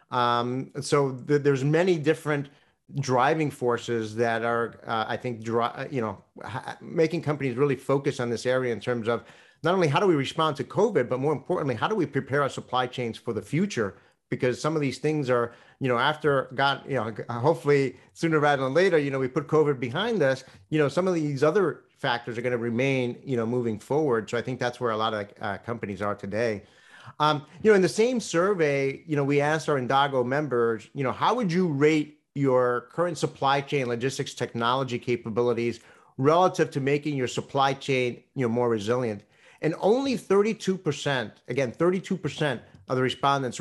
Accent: American